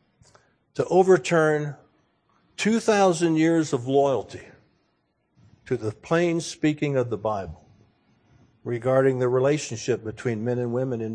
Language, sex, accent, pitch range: English, male, American, 120-160 Hz